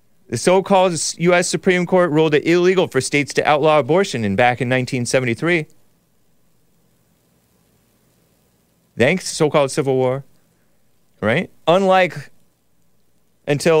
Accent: American